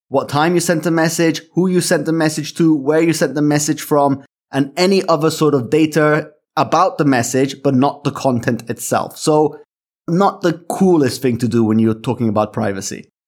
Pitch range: 135-170 Hz